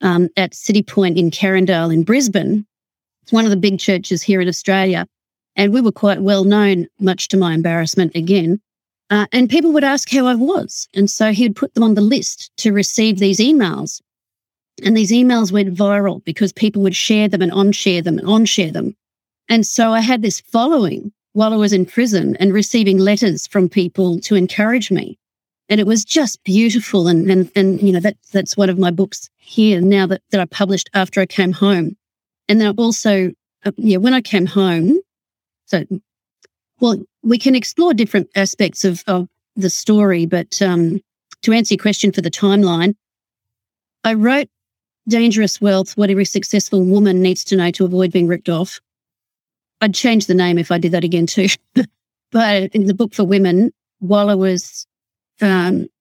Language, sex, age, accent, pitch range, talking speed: English, female, 40-59, Australian, 185-215 Hz, 185 wpm